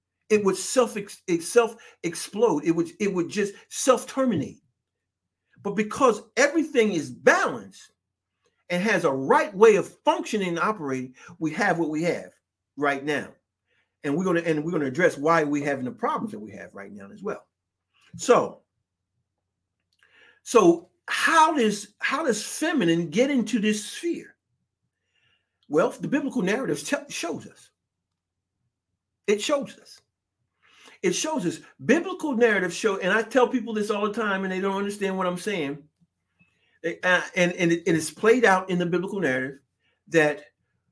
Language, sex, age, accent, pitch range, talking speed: English, male, 50-69, American, 145-225 Hz, 155 wpm